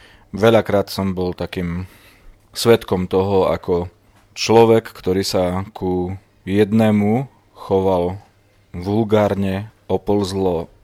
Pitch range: 95-110 Hz